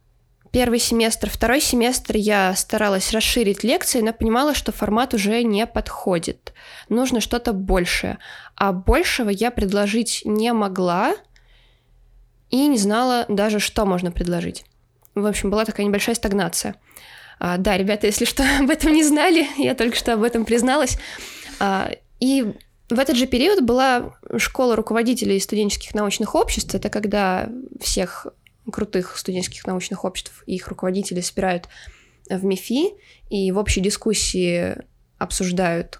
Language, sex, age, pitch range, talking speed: Russian, female, 20-39, 195-240 Hz, 130 wpm